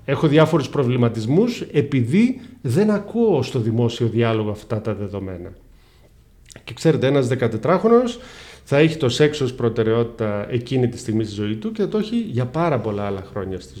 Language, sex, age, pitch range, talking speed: Greek, male, 40-59, 115-165 Hz, 160 wpm